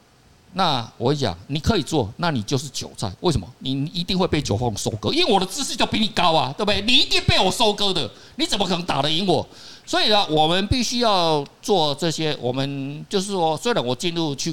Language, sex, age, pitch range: Chinese, male, 50-69, 120-195 Hz